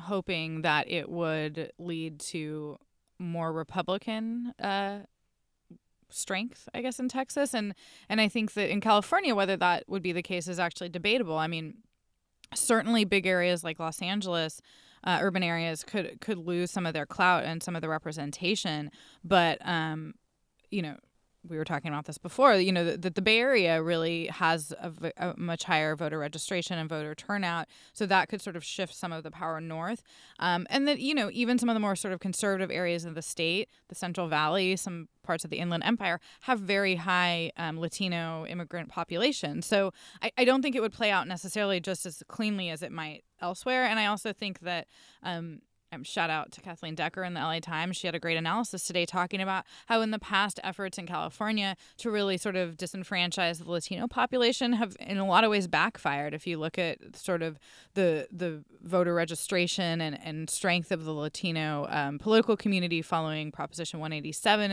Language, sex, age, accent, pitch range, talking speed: English, female, 20-39, American, 165-205 Hz, 195 wpm